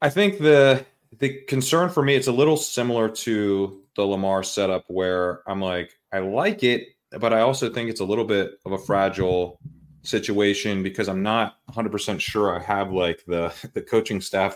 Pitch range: 95-115 Hz